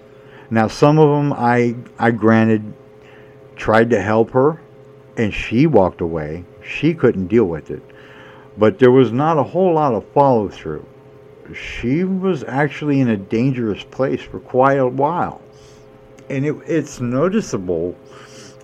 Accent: American